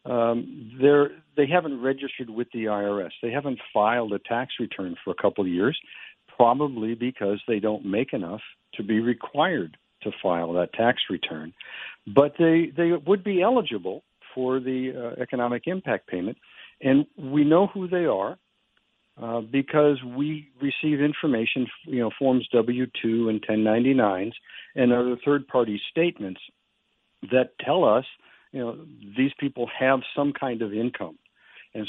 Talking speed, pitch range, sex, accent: 155 wpm, 115-145 Hz, male, American